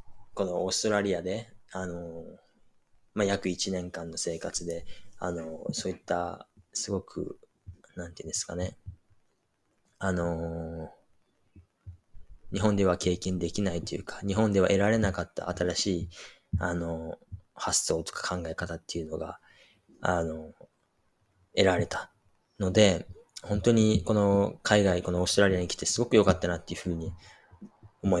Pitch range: 85-100 Hz